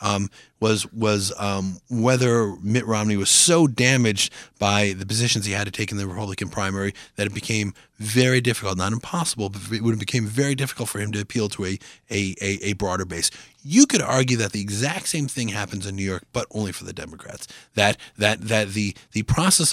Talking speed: 200 wpm